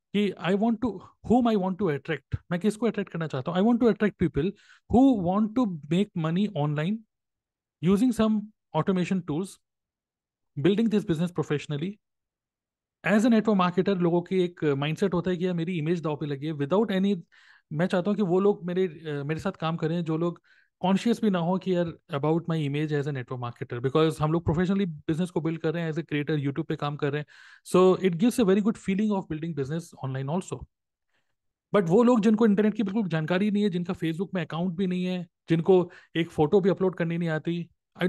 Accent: native